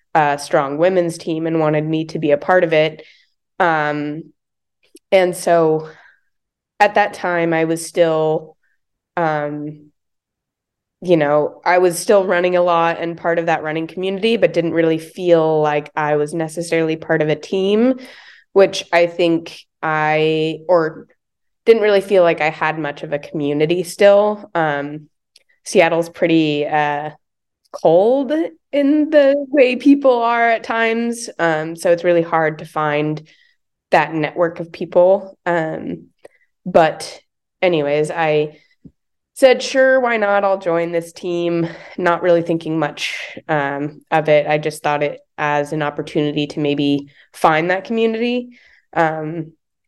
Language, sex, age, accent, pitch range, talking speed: English, female, 20-39, American, 155-195 Hz, 145 wpm